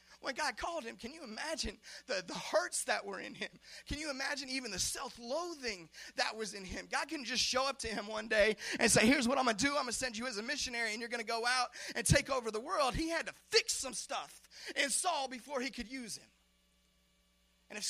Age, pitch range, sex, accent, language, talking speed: 30-49, 220-285 Hz, male, American, English, 250 wpm